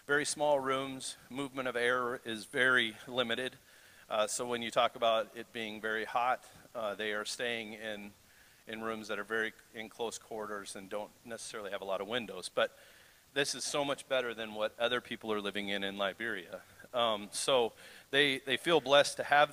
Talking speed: 195 wpm